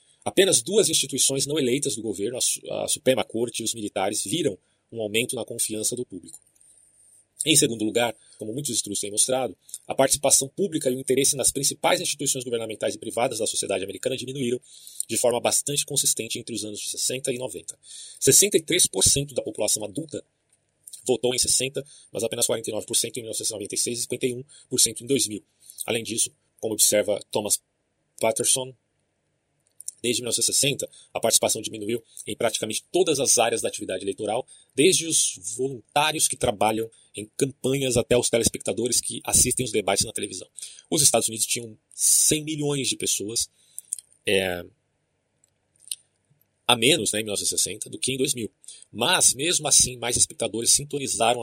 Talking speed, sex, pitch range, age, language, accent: 150 wpm, male, 110-135 Hz, 30-49, Portuguese, Brazilian